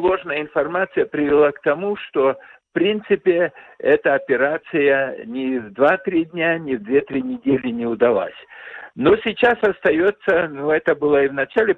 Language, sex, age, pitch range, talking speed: Russian, male, 60-79, 130-180 Hz, 150 wpm